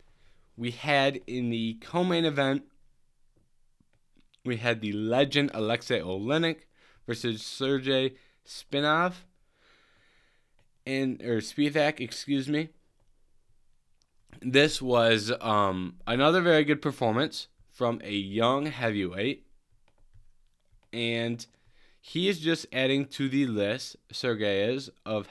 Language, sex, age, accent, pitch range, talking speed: English, male, 20-39, American, 105-135 Hz, 100 wpm